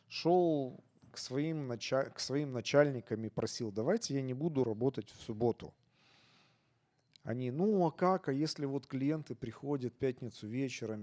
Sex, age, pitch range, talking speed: male, 40-59, 120-170 Hz, 135 wpm